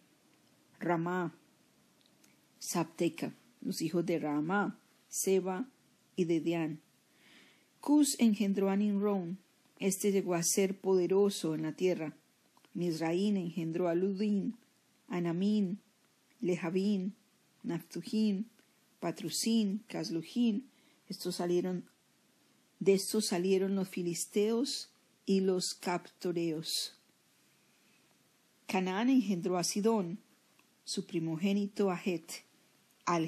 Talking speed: 85 wpm